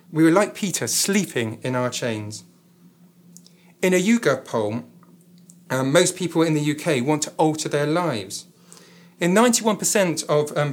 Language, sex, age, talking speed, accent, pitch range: English, male, 40-59, 150 wpm, British, 135-180 Hz